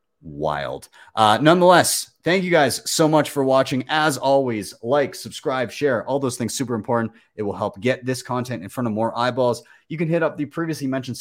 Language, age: English, 30-49